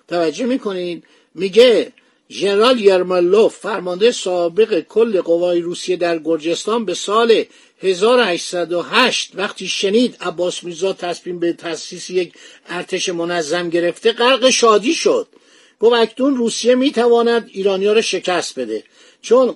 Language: Persian